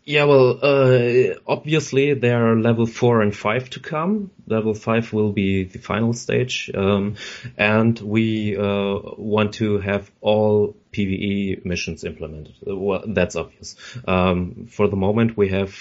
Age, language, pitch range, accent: 30-49, English, 95-115 Hz, German